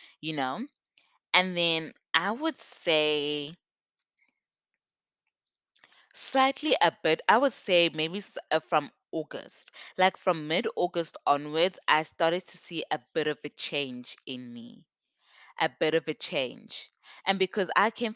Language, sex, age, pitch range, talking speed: English, female, 20-39, 150-185 Hz, 130 wpm